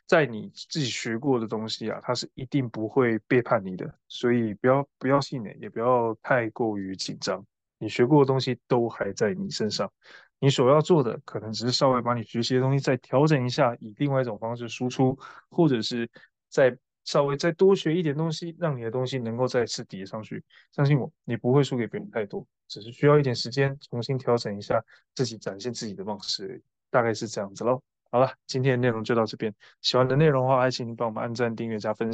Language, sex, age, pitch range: Chinese, male, 20-39, 115-140 Hz